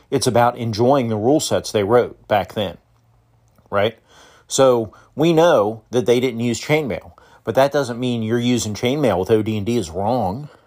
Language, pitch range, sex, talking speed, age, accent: English, 110-130 Hz, male, 170 wpm, 40-59, American